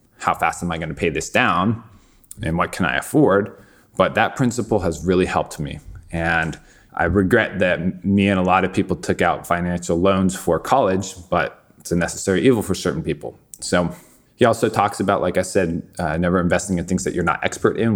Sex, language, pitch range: male, English, 90-110 Hz